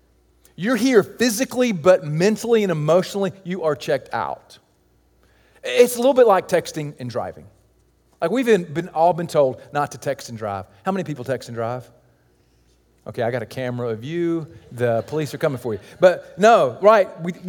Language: English